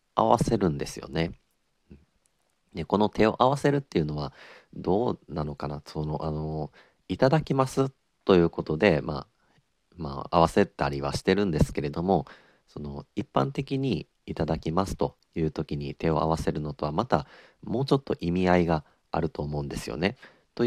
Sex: male